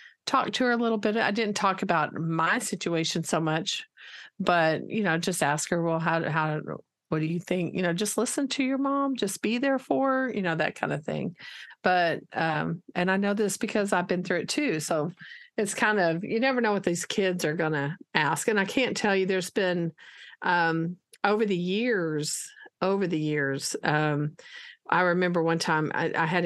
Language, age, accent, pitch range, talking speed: English, 40-59, American, 165-220 Hz, 205 wpm